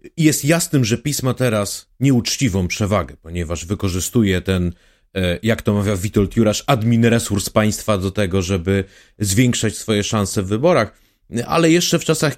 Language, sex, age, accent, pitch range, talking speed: Polish, male, 30-49, native, 95-130 Hz, 145 wpm